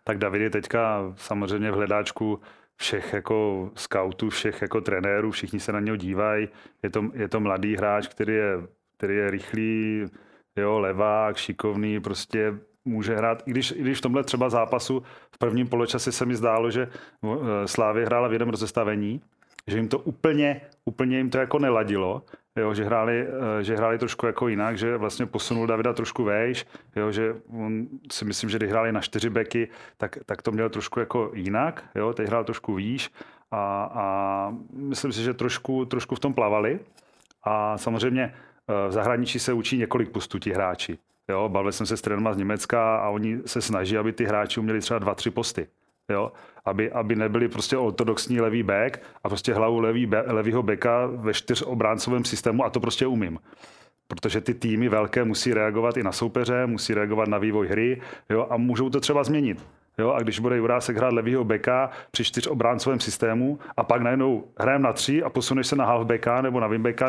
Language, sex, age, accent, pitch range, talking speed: Czech, male, 30-49, native, 105-125 Hz, 185 wpm